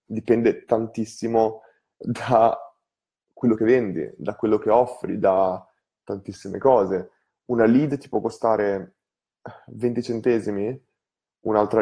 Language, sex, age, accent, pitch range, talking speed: Italian, male, 20-39, native, 115-155 Hz, 105 wpm